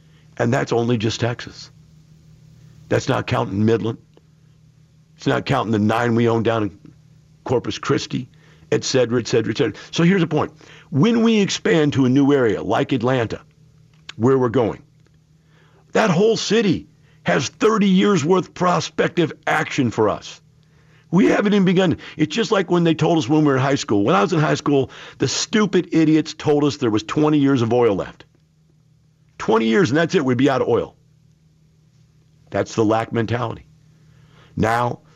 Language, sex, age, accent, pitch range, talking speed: English, male, 50-69, American, 125-155 Hz, 175 wpm